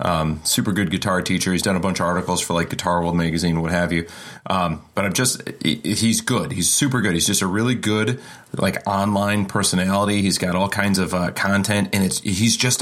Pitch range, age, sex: 90-105 Hz, 30-49, male